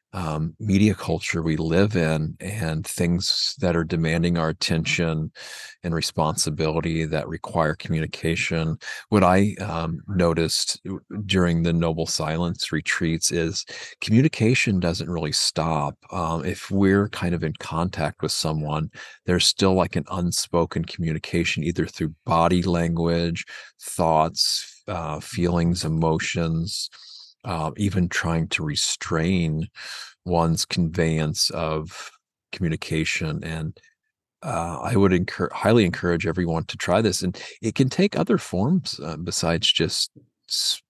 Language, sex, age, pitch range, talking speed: English, male, 40-59, 80-95 Hz, 125 wpm